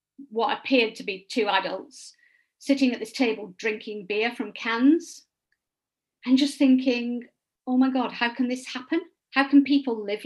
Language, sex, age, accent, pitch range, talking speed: English, female, 50-69, British, 215-270 Hz, 165 wpm